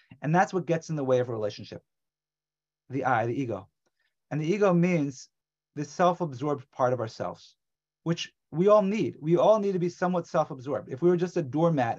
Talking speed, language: 200 wpm, English